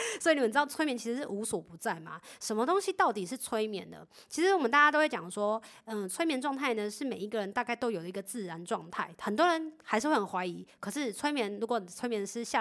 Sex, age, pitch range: female, 20-39, 190-235 Hz